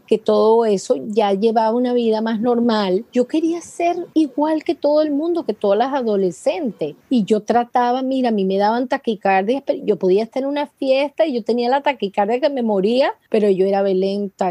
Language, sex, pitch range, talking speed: English, female, 185-245 Hz, 205 wpm